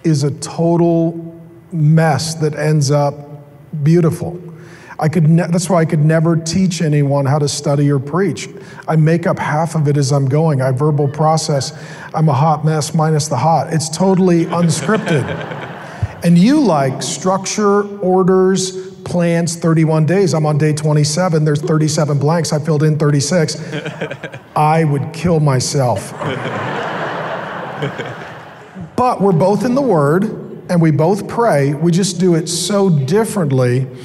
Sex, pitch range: male, 150-175 Hz